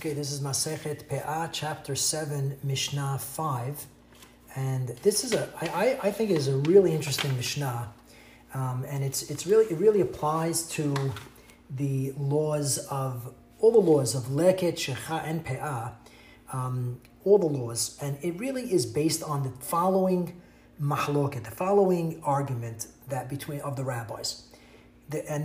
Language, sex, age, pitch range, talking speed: English, male, 30-49, 135-165 Hz, 155 wpm